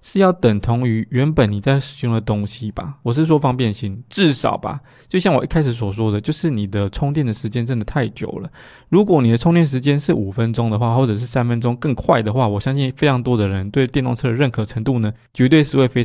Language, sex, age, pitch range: Chinese, male, 20-39, 110-140 Hz